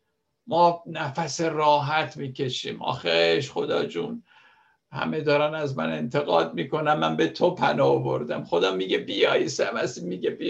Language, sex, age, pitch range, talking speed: Persian, male, 60-79, 130-170 Hz, 150 wpm